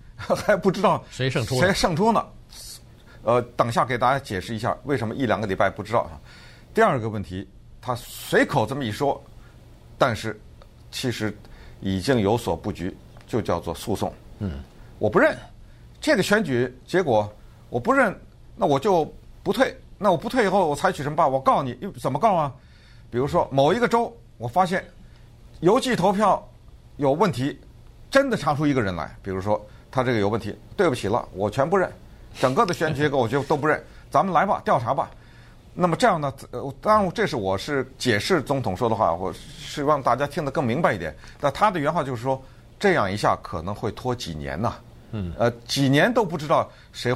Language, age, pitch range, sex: Chinese, 50-69, 110-160 Hz, male